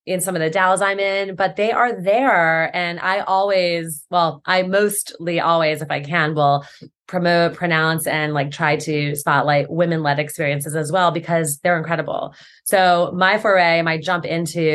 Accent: American